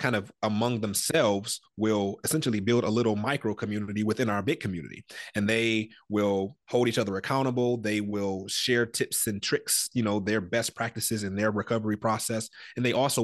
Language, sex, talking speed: English, male, 180 wpm